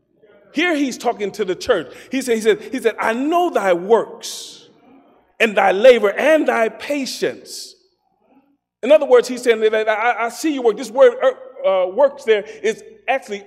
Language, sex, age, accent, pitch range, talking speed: English, male, 30-49, American, 215-320 Hz, 185 wpm